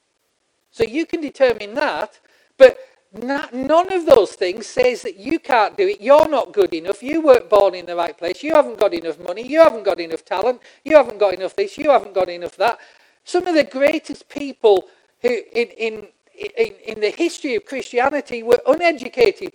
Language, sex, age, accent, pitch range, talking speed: English, male, 40-59, British, 235-335 Hz, 195 wpm